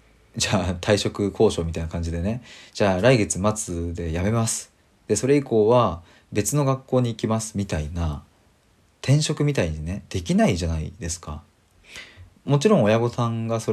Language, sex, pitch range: Japanese, male, 85-125 Hz